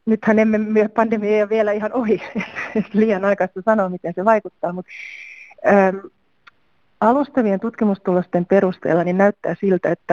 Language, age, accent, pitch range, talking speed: Finnish, 30-49, native, 180-215 Hz, 125 wpm